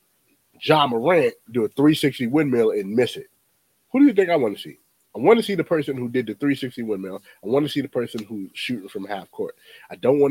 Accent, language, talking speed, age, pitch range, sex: American, English, 250 wpm, 30-49, 120-185 Hz, male